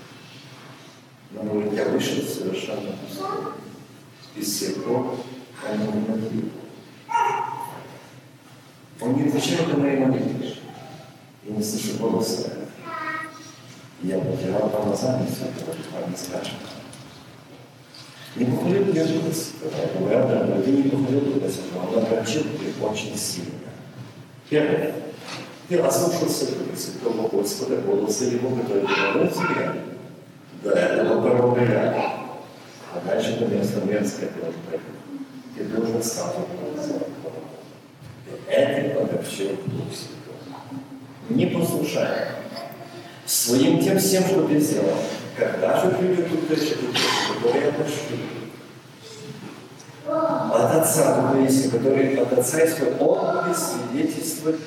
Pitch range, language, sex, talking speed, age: 125-155 Hz, Russian, male, 95 wpm, 50-69